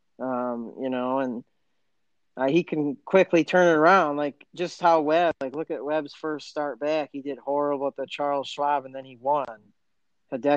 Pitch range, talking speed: 130-160 Hz, 195 wpm